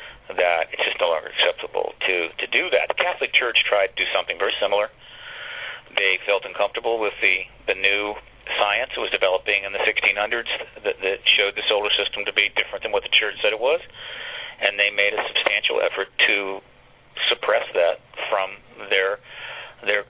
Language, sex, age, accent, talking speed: English, male, 40-59, American, 180 wpm